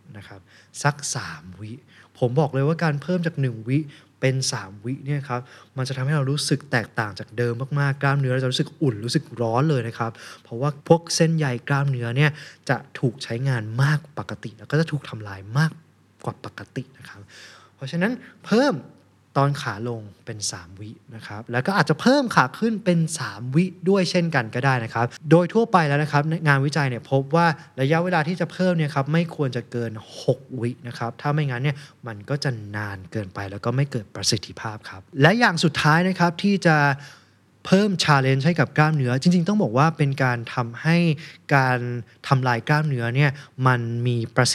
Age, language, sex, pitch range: 20-39, Thai, male, 120-155 Hz